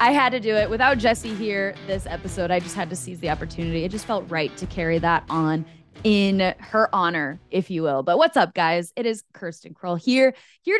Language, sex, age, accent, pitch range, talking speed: English, female, 10-29, American, 175-220 Hz, 230 wpm